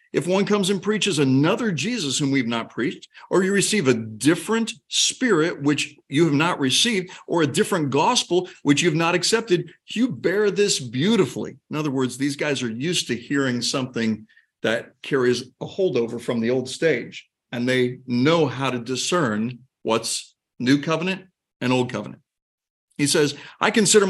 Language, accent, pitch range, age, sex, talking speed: English, American, 120-165 Hz, 50-69, male, 170 wpm